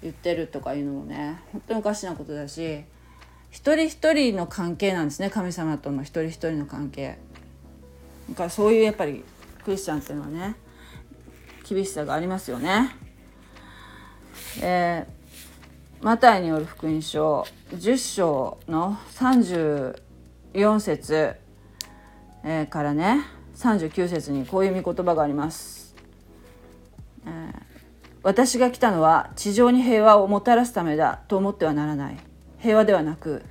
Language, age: Japanese, 40-59